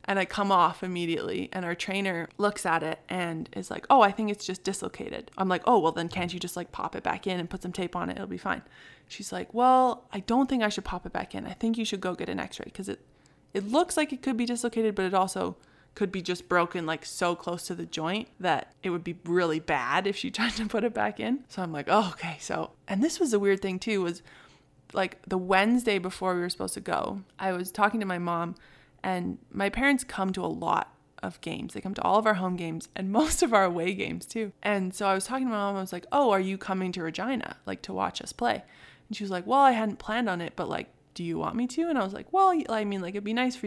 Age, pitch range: 20-39, 180-215 Hz